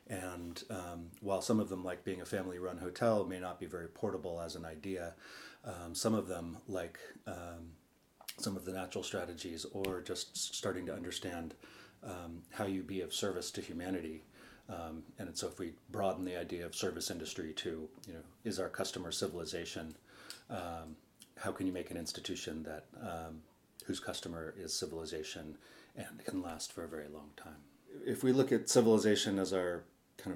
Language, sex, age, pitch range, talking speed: English, male, 30-49, 80-95 Hz, 180 wpm